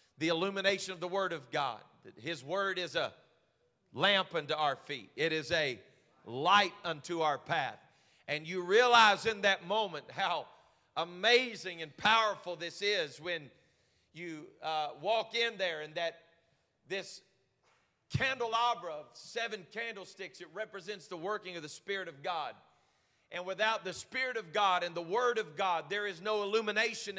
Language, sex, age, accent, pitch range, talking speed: English, male, 40-59, American, 160-200 Hz, 155 wpm